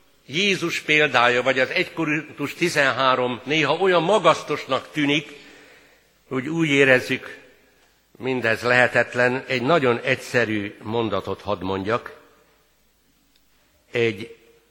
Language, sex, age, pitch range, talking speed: Hungarian, male, 60-79, 115-150 Hz, 95 wpm